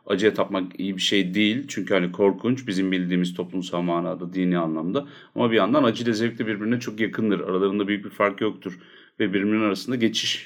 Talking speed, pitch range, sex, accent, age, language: 190 wpm, 90-115 Hz, male, native, 40-59, Turkish